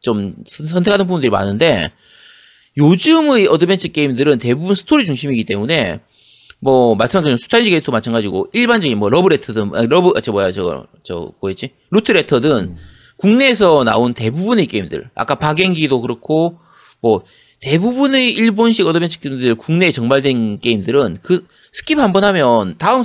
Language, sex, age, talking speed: English, male, 30-49, 120 wpm